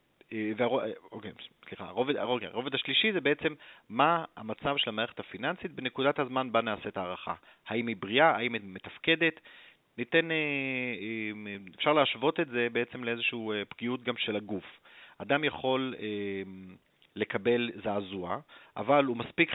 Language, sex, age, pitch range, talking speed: Hebrew, male, 30-49, 110-170 Hz, 140 wpm